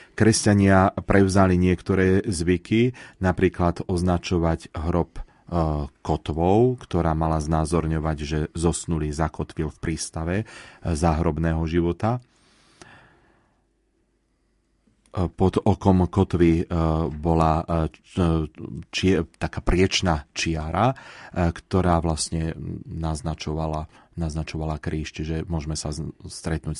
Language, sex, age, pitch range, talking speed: Slovak, male, 30-49, 80-90 Hz, 85 wpm